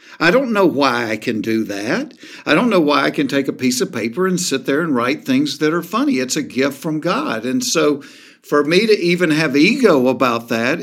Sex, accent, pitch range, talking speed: male, American, 135-205 Hz, 240 wpm